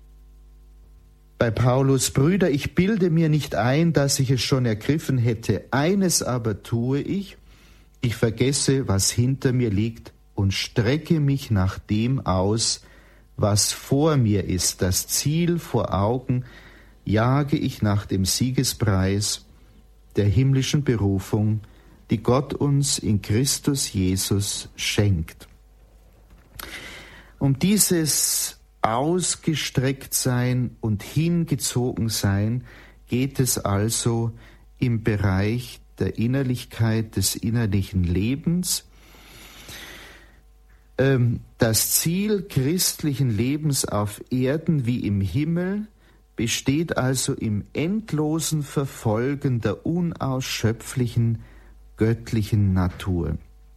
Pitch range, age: 100-140 Hz, 50-69